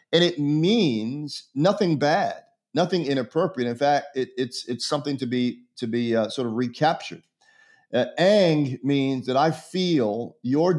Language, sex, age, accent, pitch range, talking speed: English, male, 40-59, American, 115-150 Hz, 155 wpm